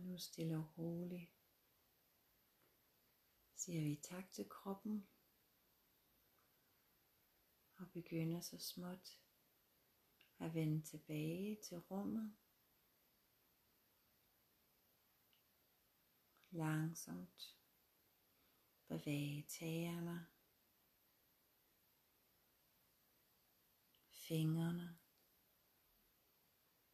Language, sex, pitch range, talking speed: Danish, female, 155-190 Hz, 50 wpm